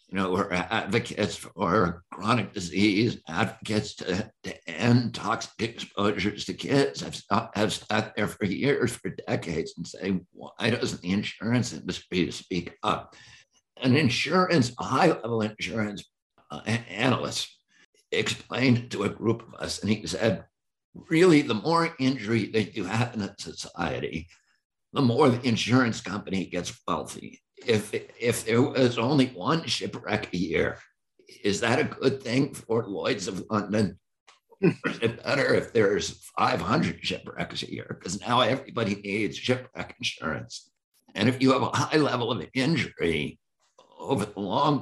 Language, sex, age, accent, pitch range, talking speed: English, male, 60-79, American, 105-125 Hz, 145 wpm